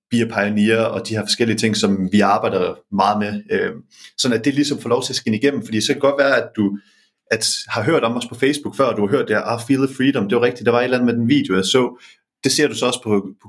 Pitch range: 105-135 Hz